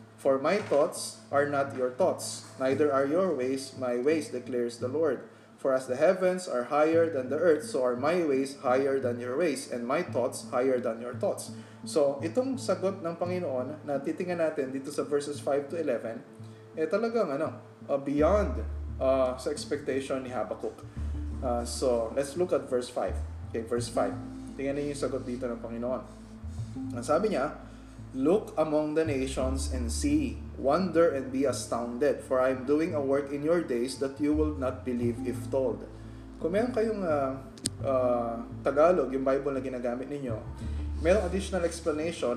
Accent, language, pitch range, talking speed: native, Filipino, 115-145 Hz, 175 wpm